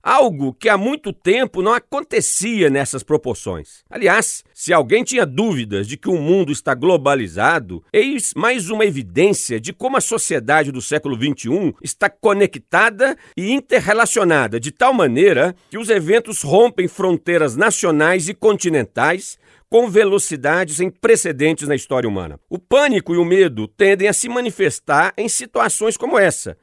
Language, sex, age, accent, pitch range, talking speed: Portuguese, male, 50-69, Brazilian, 155-230 Hz, 150 wpm